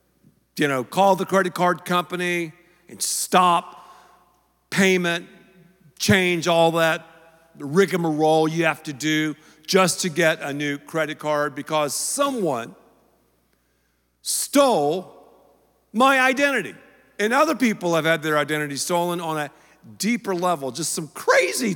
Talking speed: 125 wpm